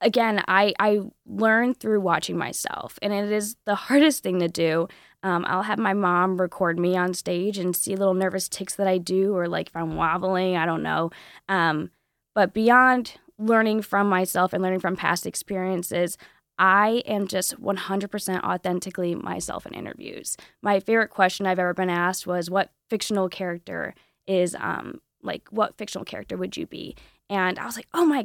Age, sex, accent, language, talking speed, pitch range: 10-29, female, American, English, 180 wpm, 185-230 Hz